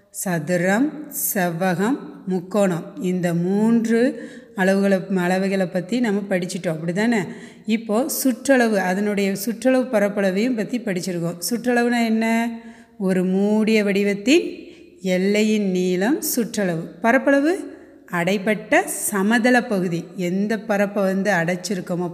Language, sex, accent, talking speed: Tamil, female, native, 90 wpm